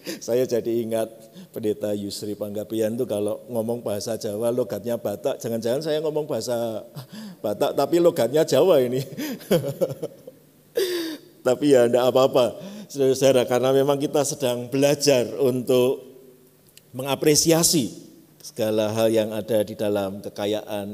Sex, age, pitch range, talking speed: male, 50-69, 120-185 Hz, 120 wpm